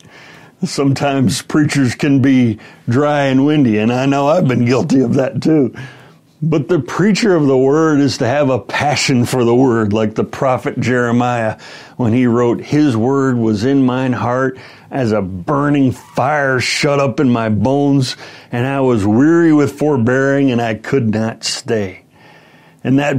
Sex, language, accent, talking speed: male, English, American, 170 wpm